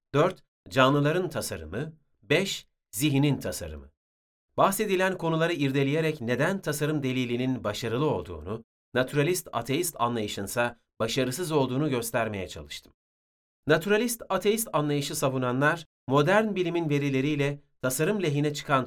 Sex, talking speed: male, 90 wpm